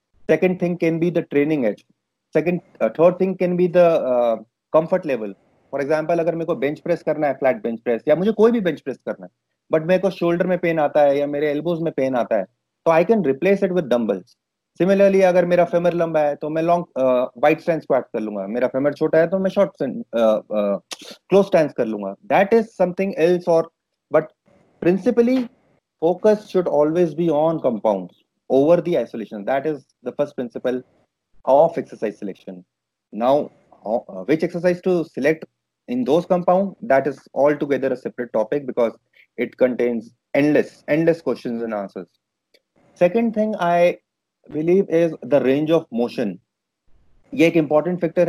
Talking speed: 185 wpm